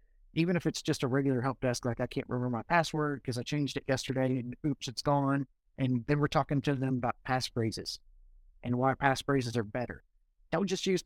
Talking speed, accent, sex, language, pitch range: 210 wpm, American, male, English, 120-155 Hz